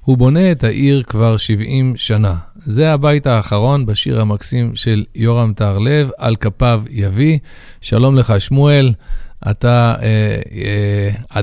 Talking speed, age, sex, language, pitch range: 125 wpm, 40-59, male, Hebrew, 110-135 Hz